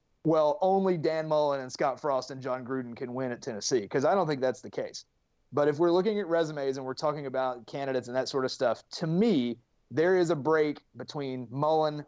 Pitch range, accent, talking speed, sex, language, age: 130-155 Hz, American, 225 wpm, male, English, 30-49